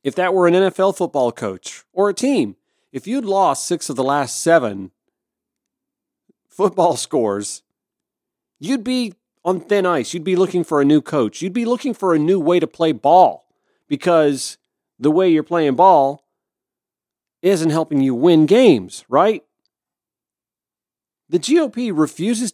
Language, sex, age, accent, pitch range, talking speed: English, male, 40-59, American, 115-175 Hz, 150 wpm